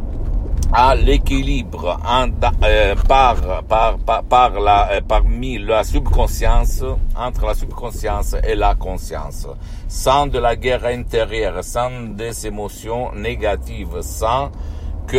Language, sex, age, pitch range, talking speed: Italian, male, 60-79, 75-105 Hz, 125 wpm